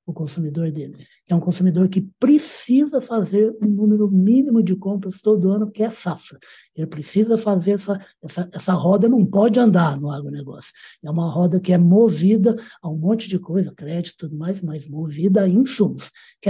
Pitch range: 170-215 Hz